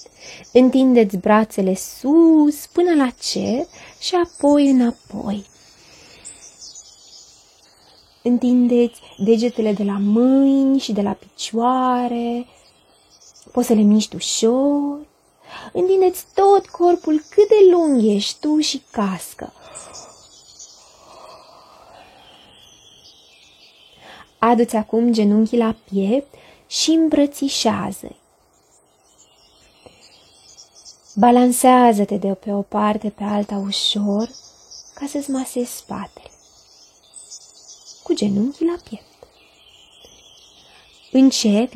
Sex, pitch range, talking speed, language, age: female, 210-290 Hz, 80 wpm, Romanian, 20-39